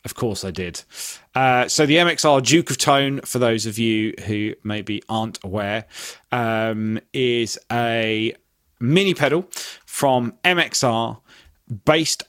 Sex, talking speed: male, 130 wpm